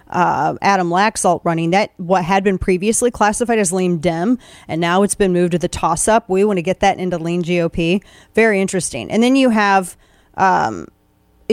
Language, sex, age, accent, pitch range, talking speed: English, female, 30-49, American, 185-230 Hz, 195 wpm